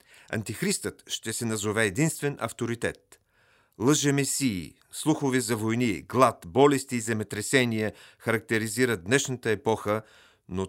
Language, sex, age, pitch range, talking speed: Bulgarian, male, 40-59, 100-130 Hz, 100 wpm